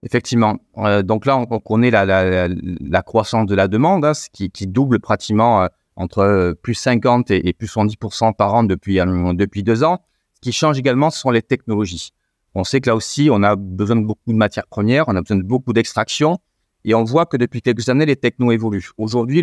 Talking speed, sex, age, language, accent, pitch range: 210 wpm, male, 30-49, French, French, 105-135 Hz